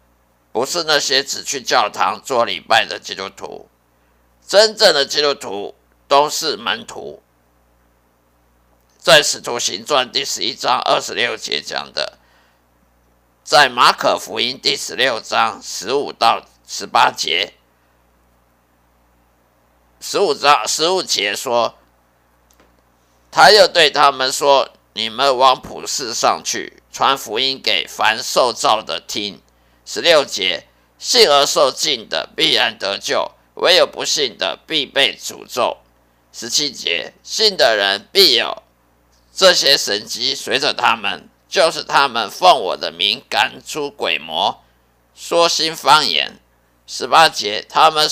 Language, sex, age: Chinese, male, 50-69